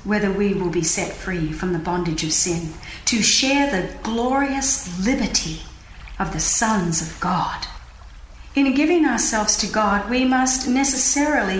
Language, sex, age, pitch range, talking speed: English, female, 40-59, 185-250 Hz, 150 wpm